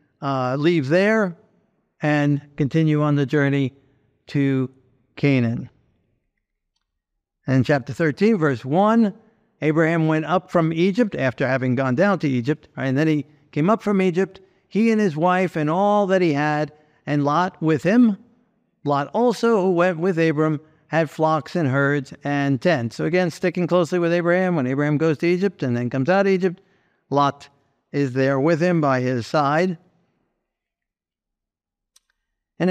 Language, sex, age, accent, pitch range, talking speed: English, male, 50-69, American, 145-190 Hz, 155 wpm